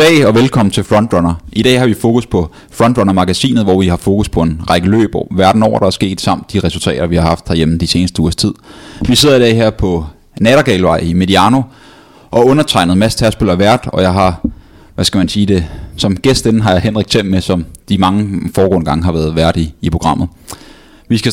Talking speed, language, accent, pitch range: 220 wpm, Danish, native, 90-110 Hz